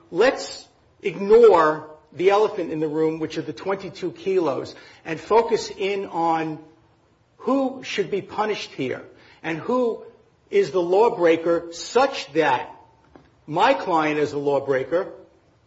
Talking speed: 125 wpm